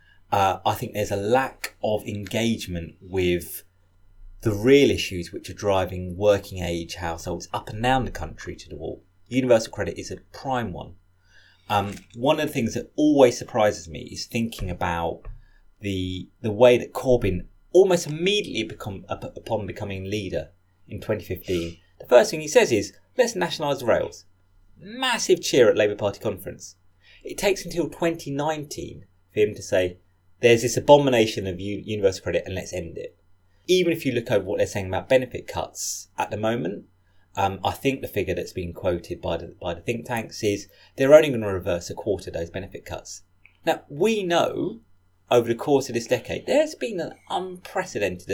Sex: male